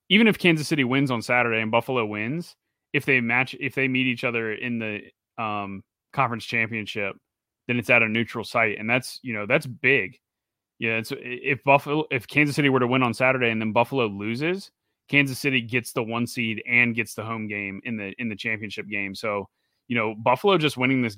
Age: 30-49